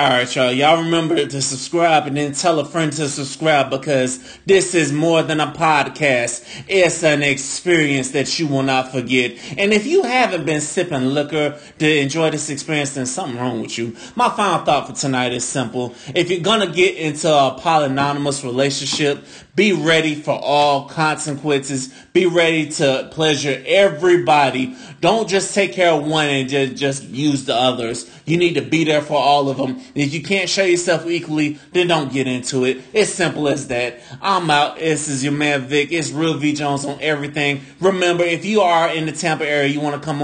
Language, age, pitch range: English, 30-49, 140-170 Hz